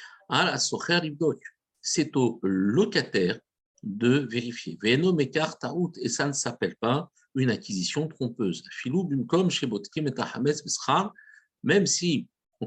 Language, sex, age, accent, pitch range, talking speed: French, male, 50-69, French, 120-160 Hz, 75 wpm